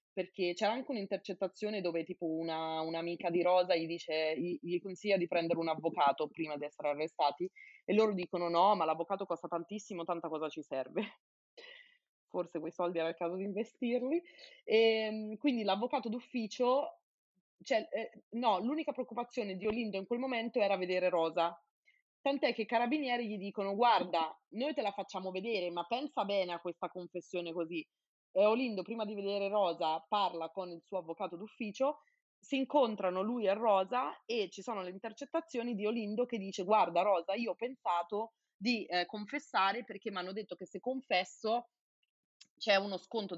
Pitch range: 175-235 Hz